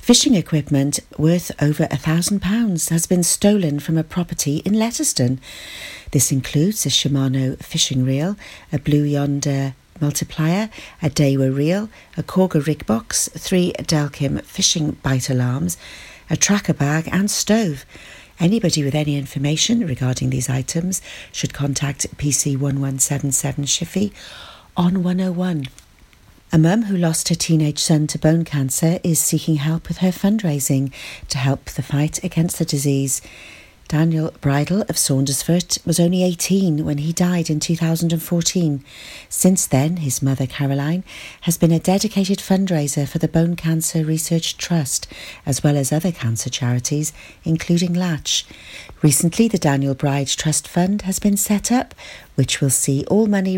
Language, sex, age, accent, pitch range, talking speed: English, female, 50-69, British, 140-175 Hz, 145 wpm